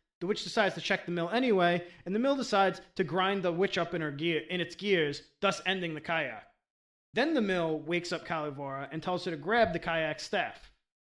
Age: 30-49